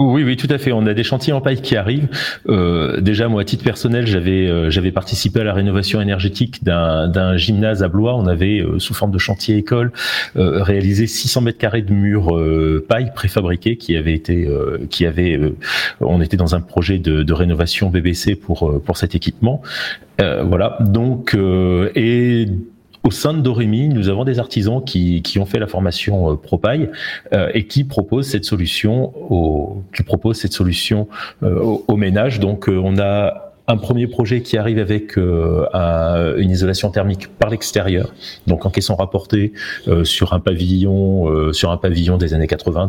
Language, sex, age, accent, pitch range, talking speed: French, male, 40-59, French, 85-110 Hz, 195 wpm